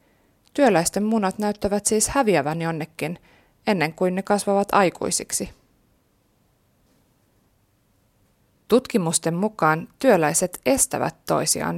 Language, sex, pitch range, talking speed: Finnish, female, 155-200 Hz, 80 wpm